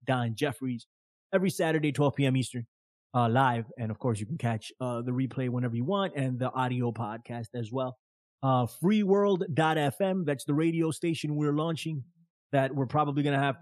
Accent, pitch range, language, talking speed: American, 120-150 Hz, English, 180 wpm